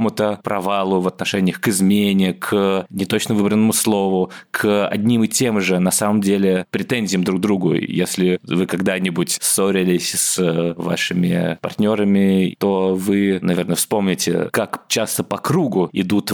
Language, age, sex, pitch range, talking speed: Russian, 20-39, male, 90-105 Hz, 140 wpm